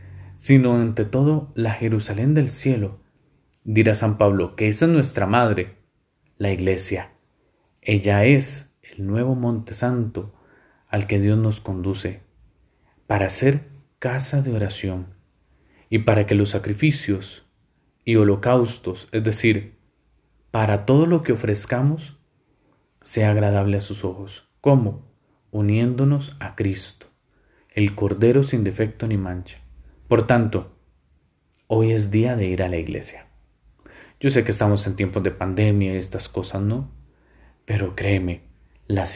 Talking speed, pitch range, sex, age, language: 135 wpm, 95-120 Hz, male, 30-49, Spanish